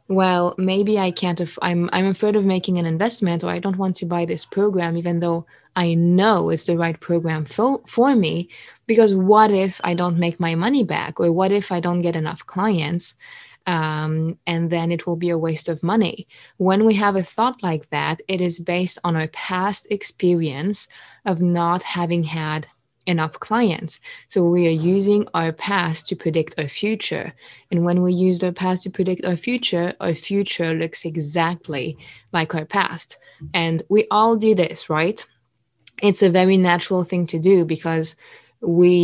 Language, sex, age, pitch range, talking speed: English, female, 20-39, 165-200 Hz, 185 wpm